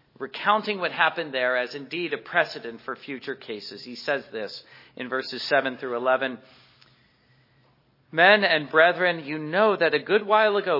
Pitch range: 135-195 Hz